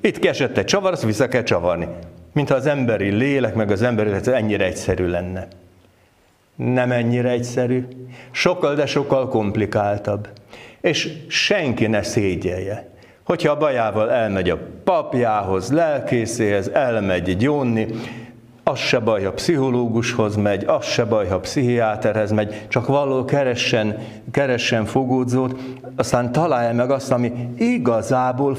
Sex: male